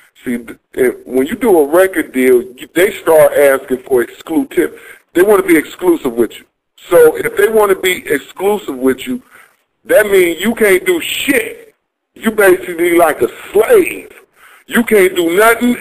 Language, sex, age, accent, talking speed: English, male, 40-59, American, 165 wpm